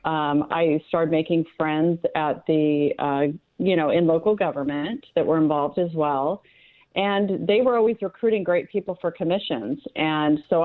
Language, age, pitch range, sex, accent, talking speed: English, 40-59, 155-180 Hz, female, American, 165 wpm